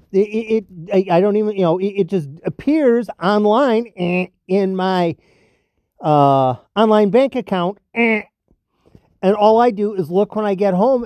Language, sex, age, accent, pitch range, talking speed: English, male, 50-69, American, 135-205 Hz, 145 wpm